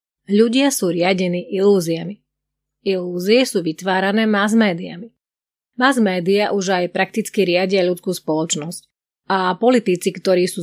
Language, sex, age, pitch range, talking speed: Slovak, female, 30-49, 175-215 Hz, 105 wpm